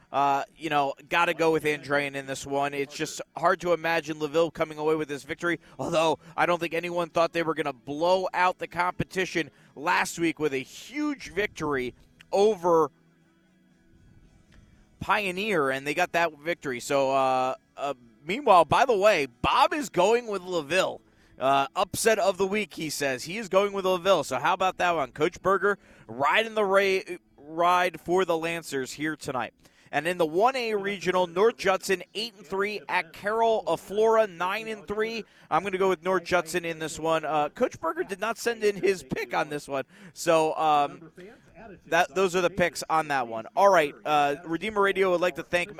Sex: male